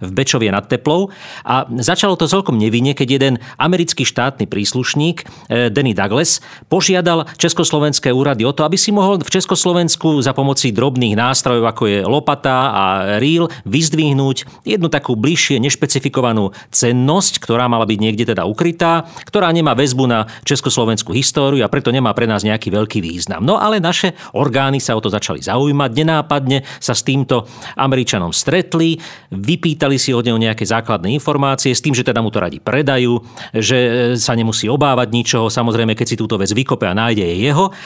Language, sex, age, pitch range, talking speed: Slovak, male, 40-59, 115-150 Hz, 170 wpm